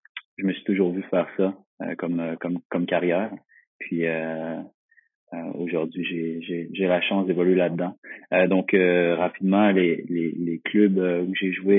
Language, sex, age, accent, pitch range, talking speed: French, male, 30-49, French, 85-95 Hz, 175 wpm